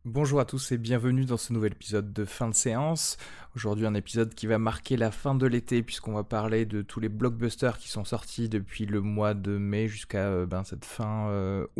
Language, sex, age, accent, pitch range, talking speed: French, male, 20-39, French, 105-125 Hz, 215 wpm